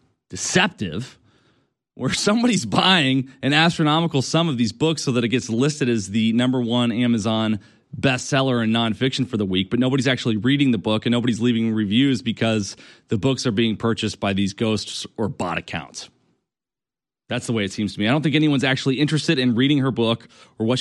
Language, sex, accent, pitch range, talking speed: English, male, American, 120-165 Hz, 195 wpm